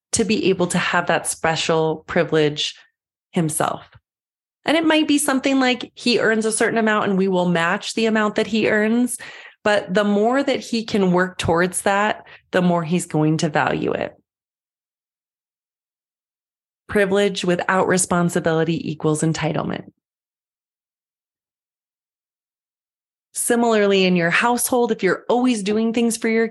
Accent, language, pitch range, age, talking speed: American, English, 185-235 Hz, 30-49, 140 wpm